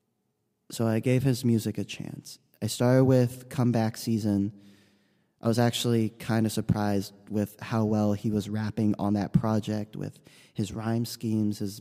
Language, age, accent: English, 20-39, American